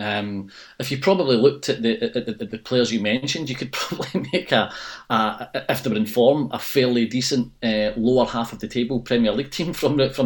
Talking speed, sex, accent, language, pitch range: 235 wpm, male, British, English, 115-130 Hz